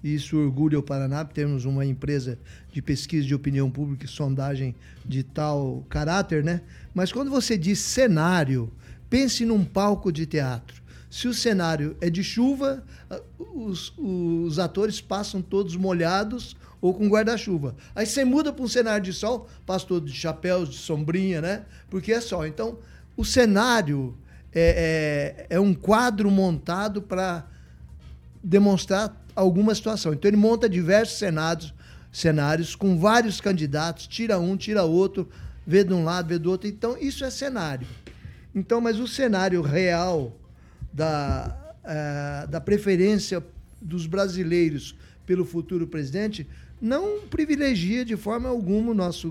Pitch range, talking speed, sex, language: 150-205 Hz, 140 wpm, male, Portuguese